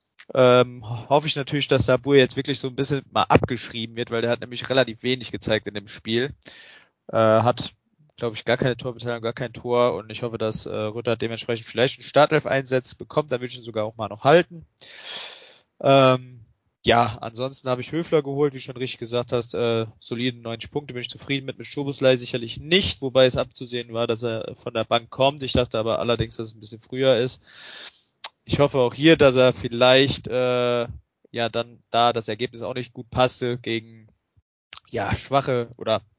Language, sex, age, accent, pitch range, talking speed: German, male, 20-39, German, 115-130 Hz, 200 wpm